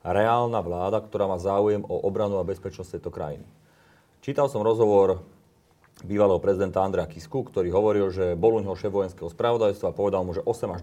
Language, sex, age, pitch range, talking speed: Slovak, male, 30-49, 90-110 Hz, 165 wpm